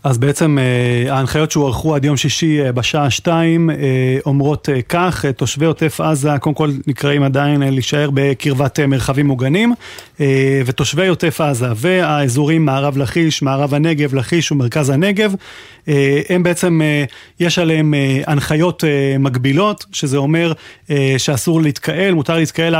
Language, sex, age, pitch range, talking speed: Hebrew, male, 30-49, 145-175 Hz, 120 wpm